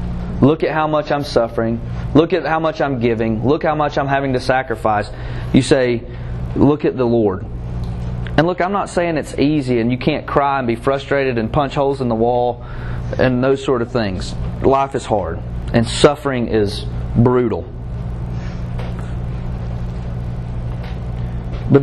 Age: 30-49